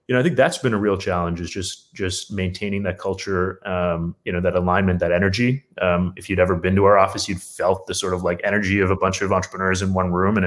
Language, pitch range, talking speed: English, 90-105 Hz, 265 wpm